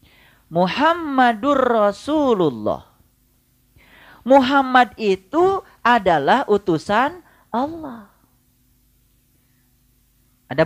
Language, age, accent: Indonesian, 40-59, native